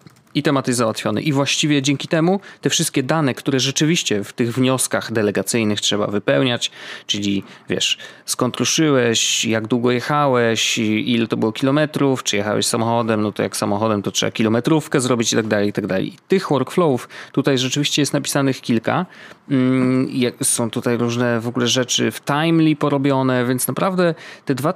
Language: Polish